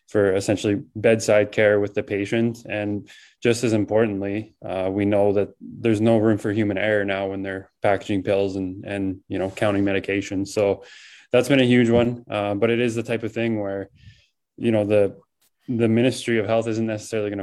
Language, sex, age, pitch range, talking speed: English, male, 20-39, 100-110 Hz, 195 wpm